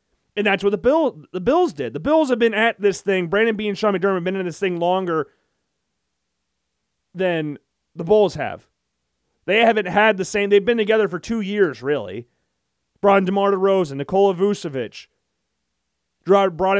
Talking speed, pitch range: 170 wpm, 170-225 Hz